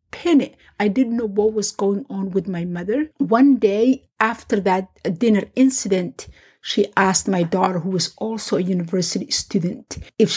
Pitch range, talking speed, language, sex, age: 190-225 Hz, 170 wpm, English, female, 50-69